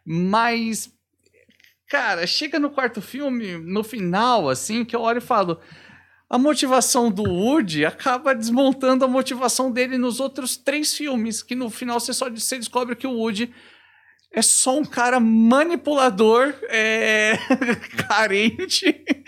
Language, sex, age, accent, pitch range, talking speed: Portuguese, male, 50-69, Brazilian, 170-255 Hz, 135 wpm